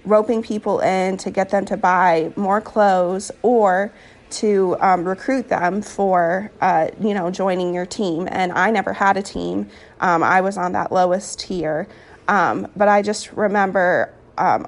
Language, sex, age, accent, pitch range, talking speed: English, female, 30-49, American, 180-215 Hz, 170 wpm